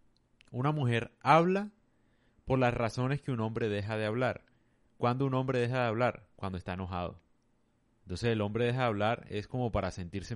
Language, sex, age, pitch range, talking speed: Spanish, male, 30-49, 105-125 Hz, 180 wpm